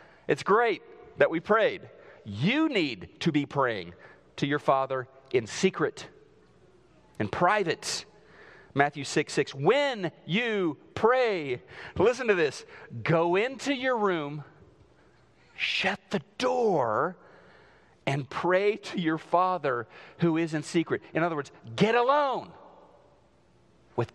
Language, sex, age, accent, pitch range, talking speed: English, male, 40-59, American, 145-205 Hz, 120 wpm